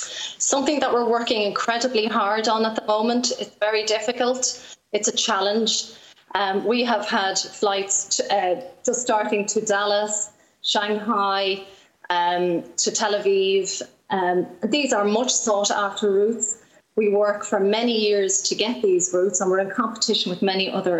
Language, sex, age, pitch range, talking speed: English, female, 30-49, 185-220 Hz, 155 wpm